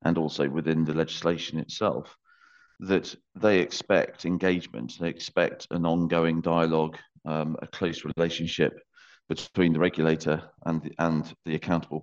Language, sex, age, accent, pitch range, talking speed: English, male, 40-59, British, 80-85 Hz, 135 wpm